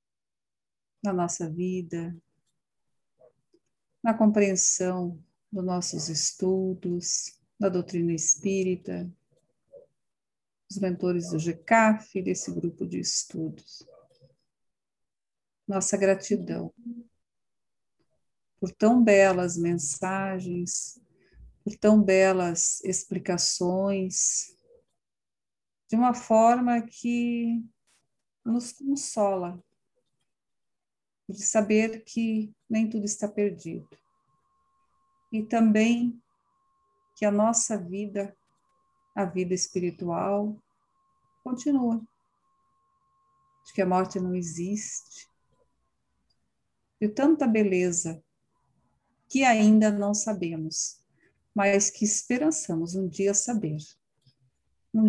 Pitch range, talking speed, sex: 180-230 Hz, 80 wpm, female